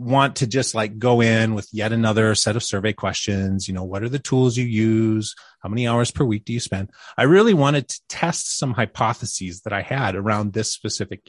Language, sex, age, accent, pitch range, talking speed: English, male, 30-49, American, 105-155 Hz, 225 wpm